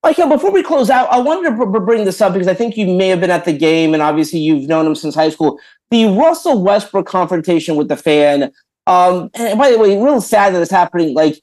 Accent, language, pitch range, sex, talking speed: American, English, 170-235 Hz, male, 255 wpm